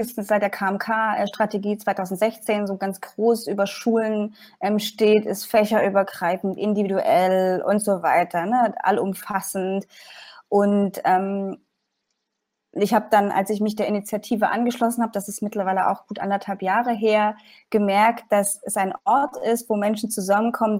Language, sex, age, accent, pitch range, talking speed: German, female, 20-39, German, 195-225 Hz, 135 wpm